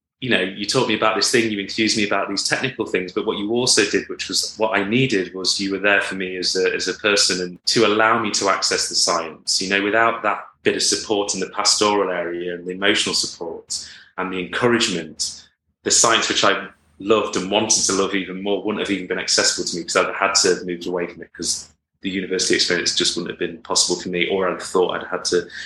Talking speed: 250 wpm